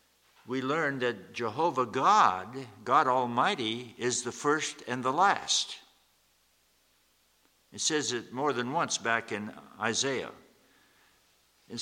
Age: 60-79